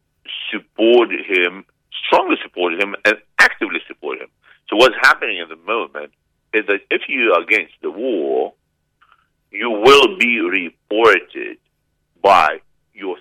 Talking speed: 125 wpm